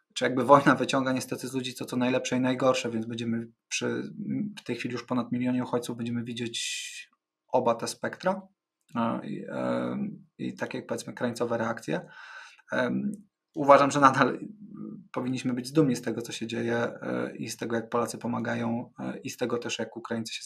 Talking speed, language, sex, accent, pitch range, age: 170 wpm, Polish, male, native, 115-145 Hz, 20-39